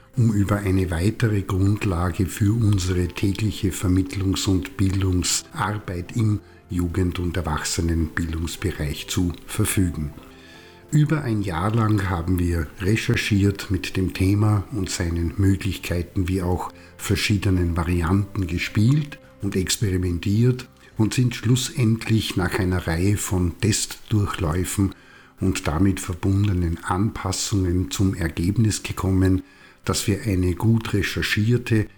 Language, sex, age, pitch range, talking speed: German, male, 50-69, 90-110 Hz, 105 wpm